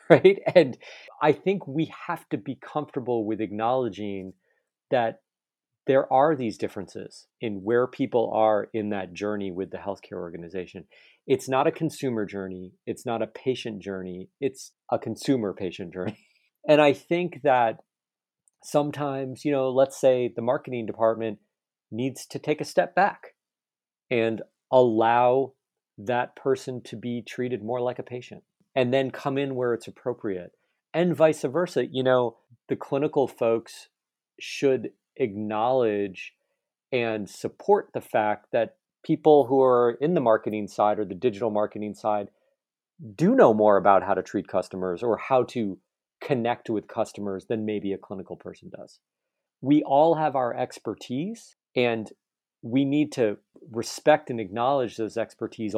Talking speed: 150 wpm